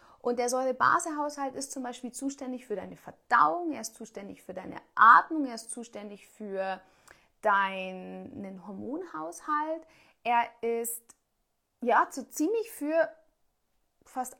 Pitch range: 220-300 Hz